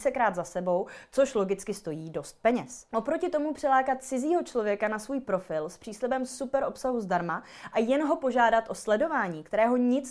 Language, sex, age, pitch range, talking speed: Czech, female, 20-39, 190-250 Hz, 165 wpm